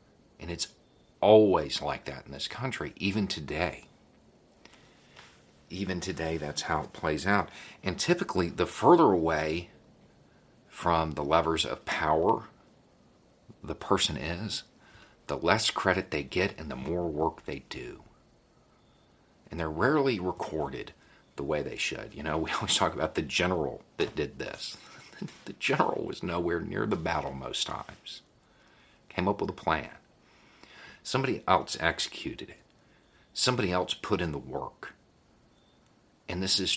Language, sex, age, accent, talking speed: English, male, 40-59, American, 140 wpm